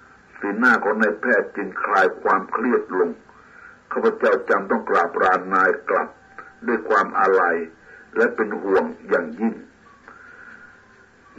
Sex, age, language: male, 60-79, Thai